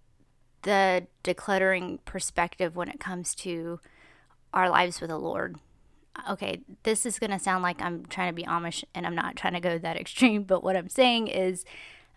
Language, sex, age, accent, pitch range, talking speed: English, female, 20-39, American, 180-215 Hz, 180 wpm